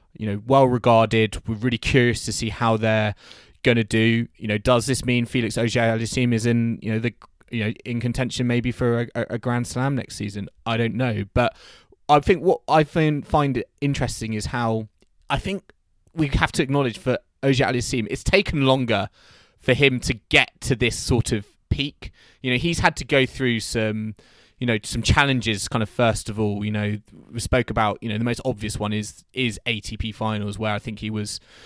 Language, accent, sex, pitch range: English, British, male, 110-130 Hz